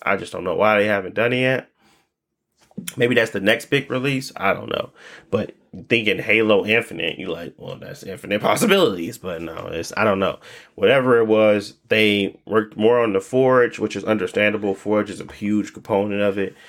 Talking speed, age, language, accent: 195 wpm, 20-39, English, American